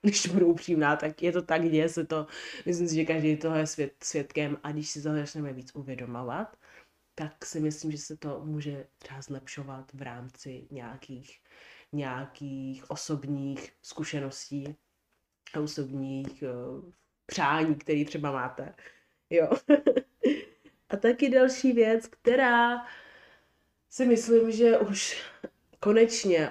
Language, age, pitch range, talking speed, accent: Czech, 20-39, 145-180 Hz, 130 wpm, native